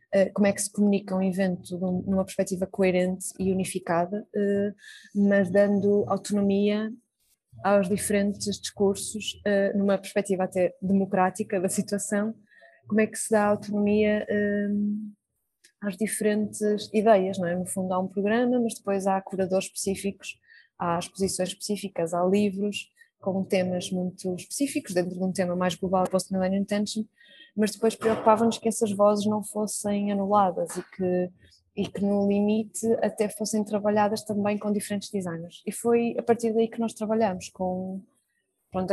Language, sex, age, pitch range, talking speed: Portuguese, female, 20-39, 190-215 Hz, 150 wpm